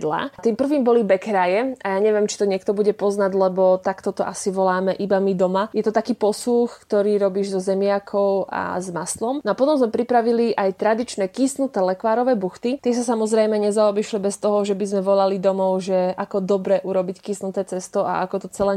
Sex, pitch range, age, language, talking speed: female, 190-220 Hz, 20-39, Slovak, 200 wpm